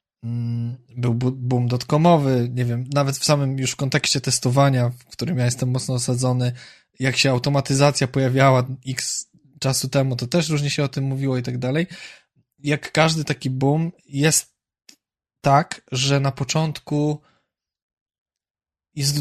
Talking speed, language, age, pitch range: 140 wpm, Polish, 20-39, 130-155 Hz